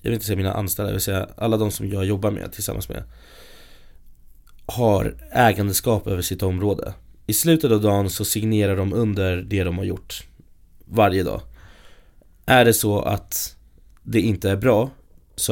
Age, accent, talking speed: 20-39, native, 175 wpm